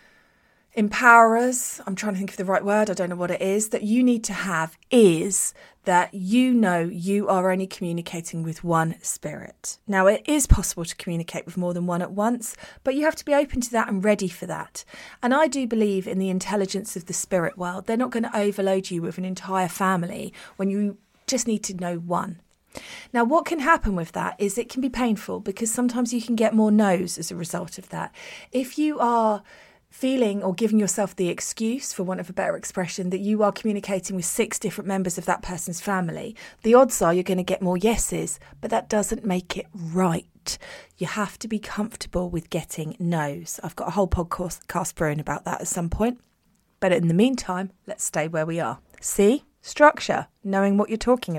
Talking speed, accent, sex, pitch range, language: 215 wpm, British, female, 180-230 Hz, English